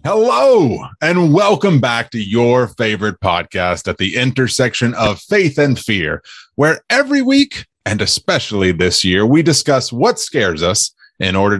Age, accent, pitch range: 30-49, American, 95-125 Hz